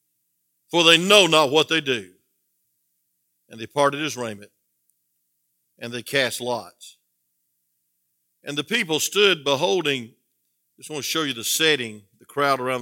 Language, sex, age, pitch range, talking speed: English, male, 50-69, 105-155 Hz, 150 wpm